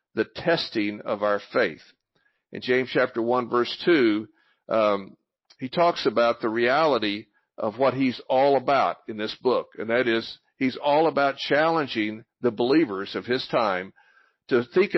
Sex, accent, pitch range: male, American, 120-160 Hz